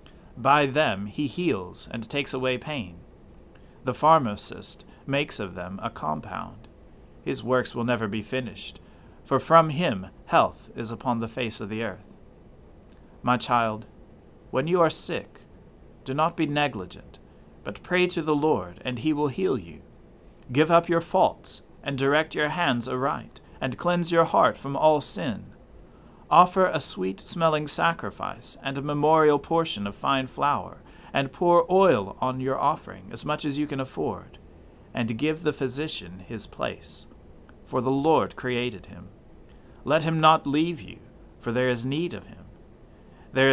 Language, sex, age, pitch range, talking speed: English, male, 40-59, 115-150 Hz, 155 wpm